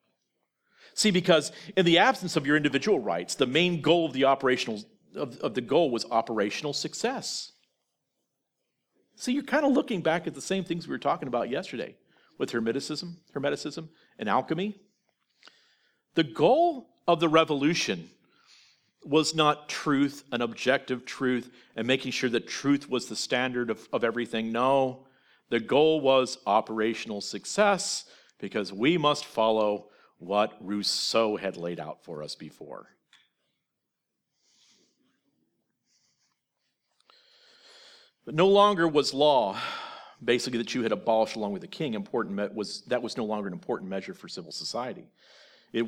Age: 50-69